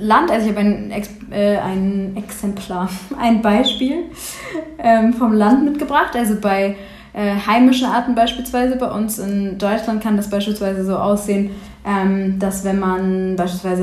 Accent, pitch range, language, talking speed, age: German, 195-230 Hz, German, 140 wpm, 20-39